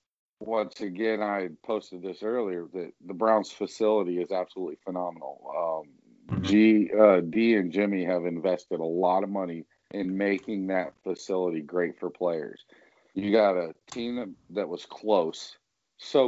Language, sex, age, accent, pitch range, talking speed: English, male, 40-59, American, 95-115 Hz, 145 wpm